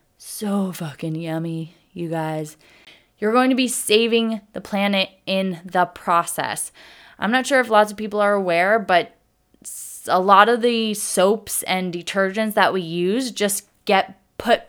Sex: female